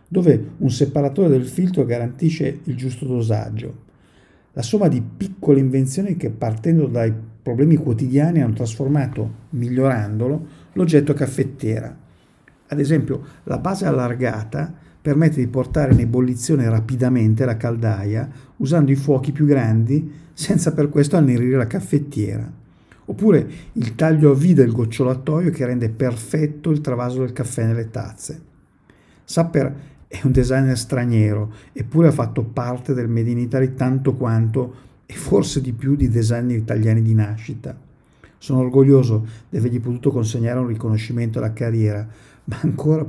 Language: Italian